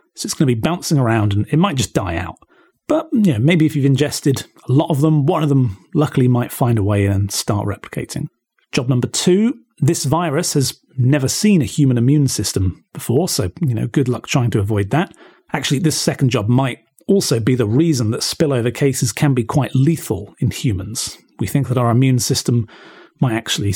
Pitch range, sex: 120-155 Hz, male